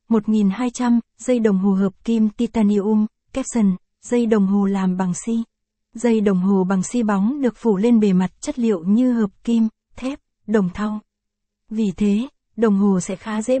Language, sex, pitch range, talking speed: Vietnamese, female, 200-235 Hz, 185 wpm